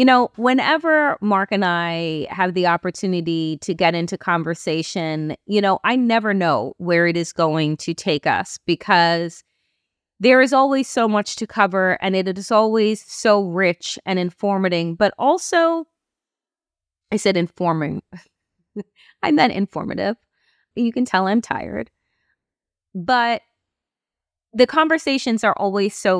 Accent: American